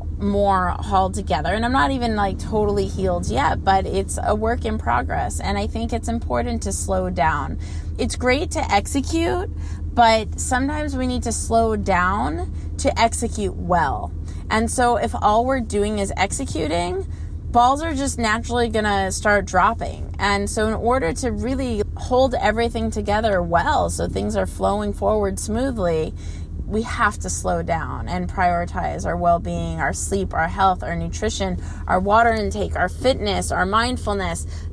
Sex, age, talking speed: female, 30-49, 160 wpm